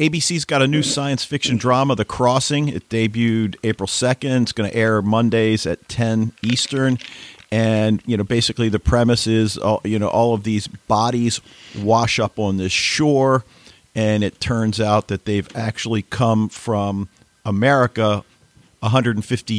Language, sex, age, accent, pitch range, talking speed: English, male, 50-69, American, 100-125 Hz, 155 wpm